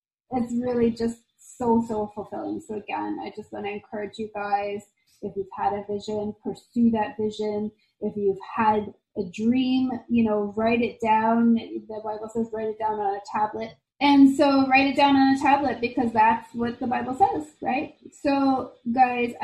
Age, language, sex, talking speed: 30-49, English, female, 180 wpm